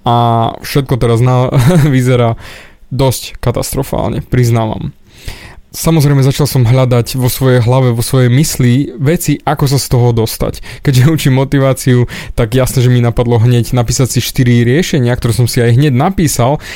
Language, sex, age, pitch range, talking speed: Slovak, male, 20-39, 120-145 Hz, 155 wpm